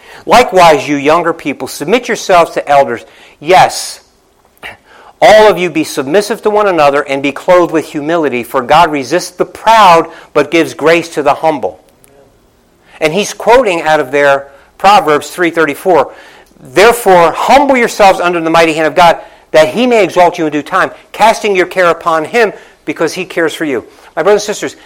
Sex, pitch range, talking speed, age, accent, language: male, 150-190 Hz, 175 wpm, 50-69, American, English